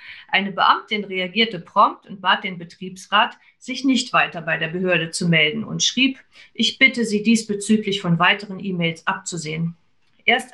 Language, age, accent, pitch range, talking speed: German, 50-69, German, 175-215 Hz, 155 wpm